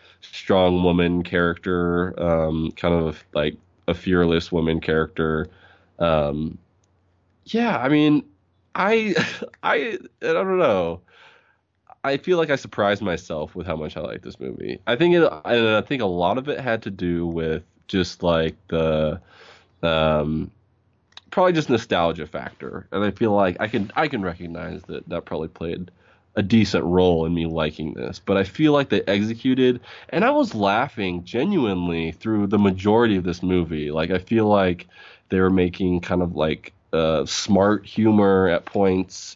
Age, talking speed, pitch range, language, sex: 20-39, 160 wpm, 85-105 Hz, English, male